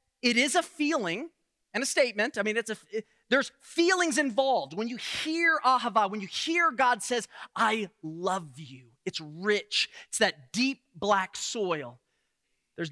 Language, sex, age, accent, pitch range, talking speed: English, male, 30-49, American, 205-285 Hz, 165 wpm